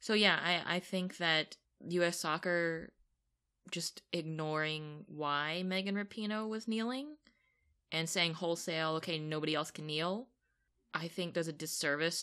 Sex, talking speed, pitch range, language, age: female, 135 wpm, 155-185 Hz, English, 20-39